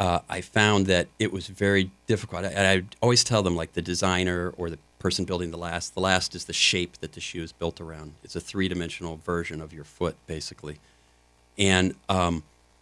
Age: 40-59